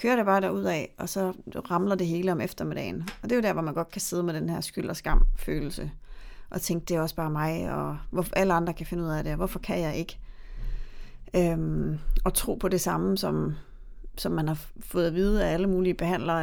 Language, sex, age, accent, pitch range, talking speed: Danish, female, 30-49, native, 160-190 Hz, 235 wpm